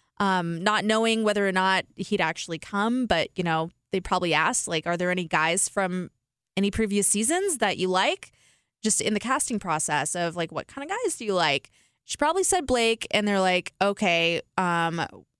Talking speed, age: 195 wpm, 20-39